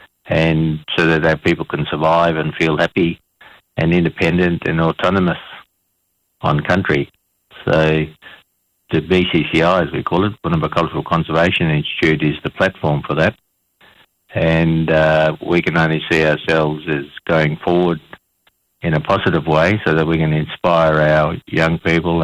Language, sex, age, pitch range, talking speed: English, male, 50-69, 75-80 Hz, 145 wpm